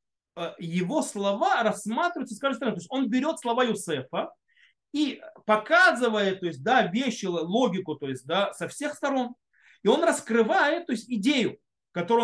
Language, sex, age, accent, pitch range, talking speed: Russian, male, 30-49, native, 180-265 Hz, 155 wpm